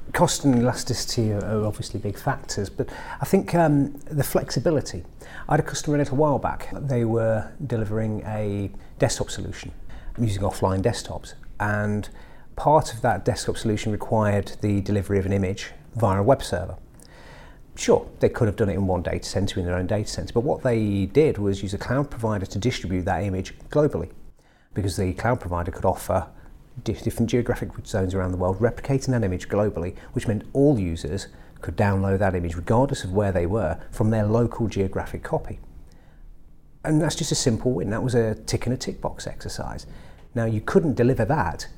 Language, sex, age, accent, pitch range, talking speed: English, male, 40-59, British, 95-120 Hz, 180 wpm